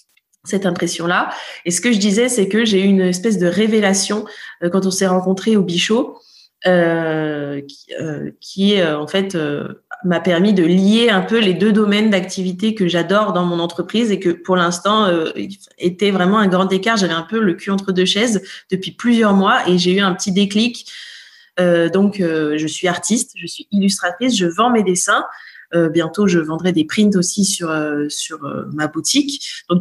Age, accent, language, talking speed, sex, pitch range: 20-39, French, French, 195 wpm, female, 170-215 Hz